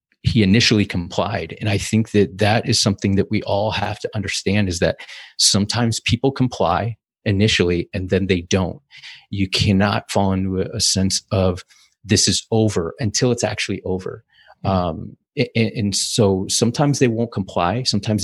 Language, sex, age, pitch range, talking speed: English, male, 30-49, 95-120 Hz, 160 wpm